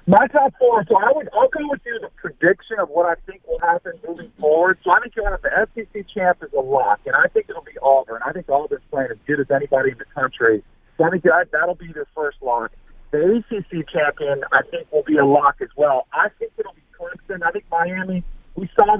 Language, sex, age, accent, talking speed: English, male, 50-69, American, 245 wpm